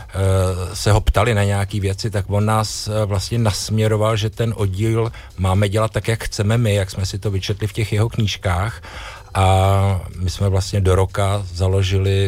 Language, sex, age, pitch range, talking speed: Czech, male, 50-69, 90-105 Hz, 175 wpm